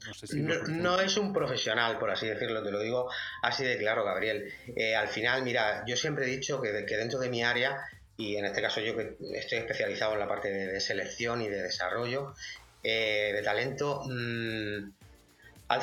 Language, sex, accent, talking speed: Spanish, male, Spanish, 190 wpm